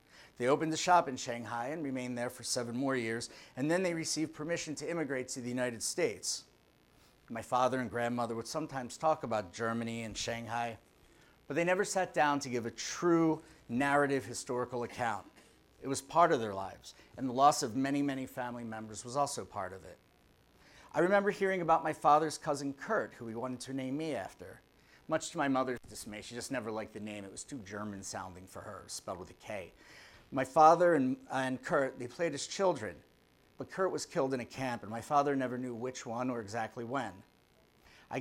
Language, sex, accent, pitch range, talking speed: English, male, American, 115-150 Hz, 205 wpm